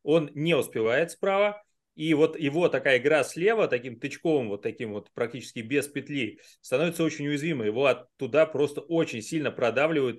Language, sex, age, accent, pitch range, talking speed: Russian, male, 30-49, native, 120-165 Hz, 160 wpm